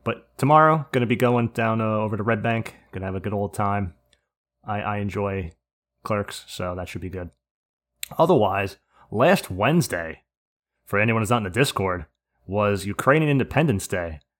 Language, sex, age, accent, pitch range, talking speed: English, male, 30-49, American, 100-145 Hz, 175 wpm